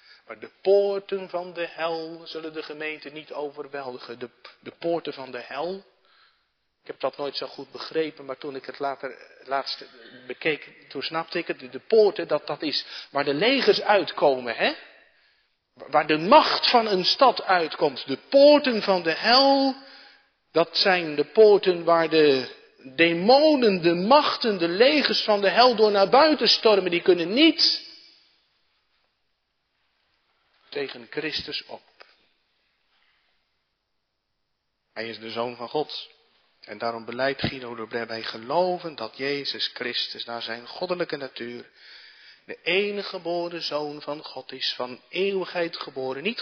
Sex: male